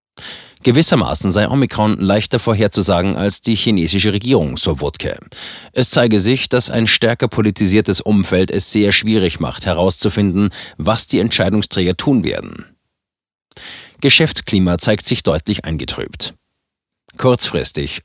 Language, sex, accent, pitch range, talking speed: German, male, German, 90-110 Hz, 115 wpm